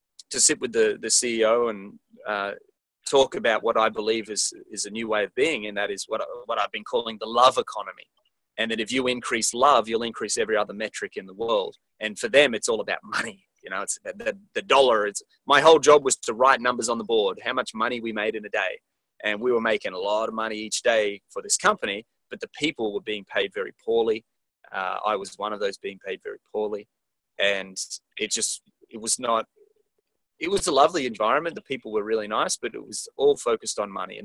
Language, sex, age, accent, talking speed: English, male, 30-49, Australian, 235 wpm